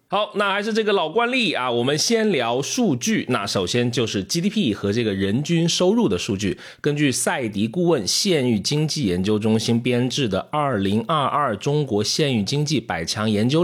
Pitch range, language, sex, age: 100-140 Hz, Chinese, male, 30-49